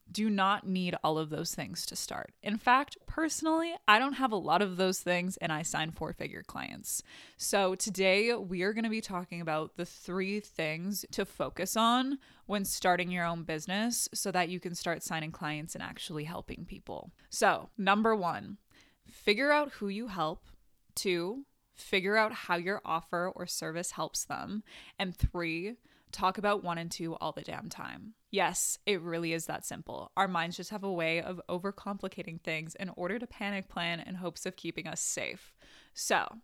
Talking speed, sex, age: 185 wpm, female, 20-39